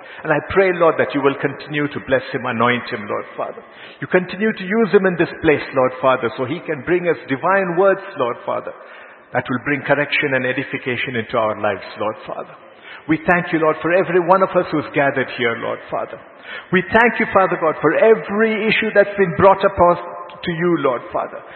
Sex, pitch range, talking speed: male, 130-175 Hz, 210 wpm